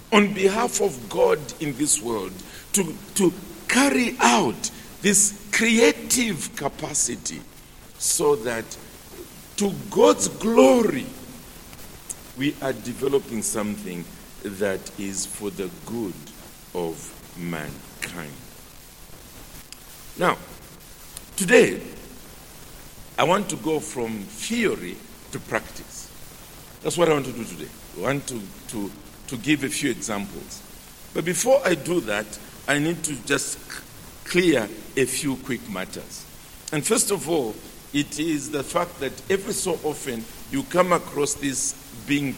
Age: 50-69